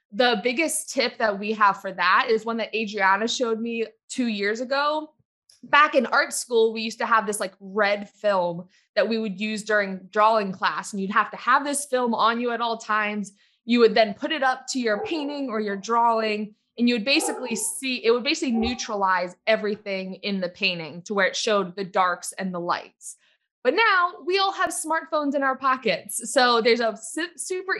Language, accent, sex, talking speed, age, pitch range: English, American, female, 205 wpm, 20-39, 205-270 Hz